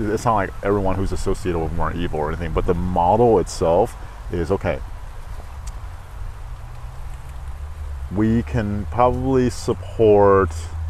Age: 30-49